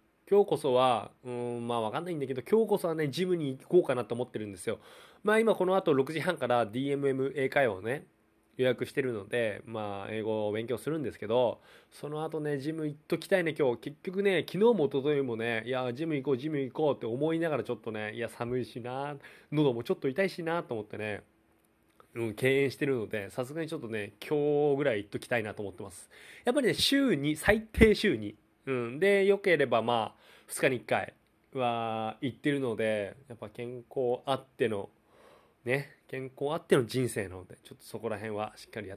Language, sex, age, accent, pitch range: Japanese, male, 20-39, native, 115-160 Hz